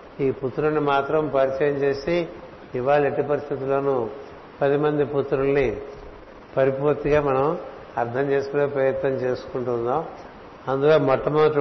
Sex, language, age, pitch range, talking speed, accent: male, Telugu, 60-79, 135-145 Hz, 100 wpm, native